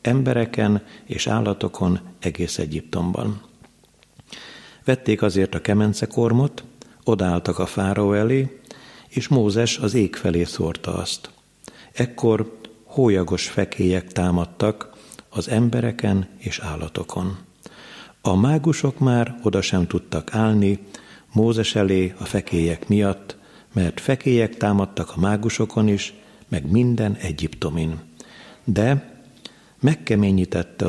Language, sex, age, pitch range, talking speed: Hungarian, male, 50-69, 90-115 Hz, 100 wpm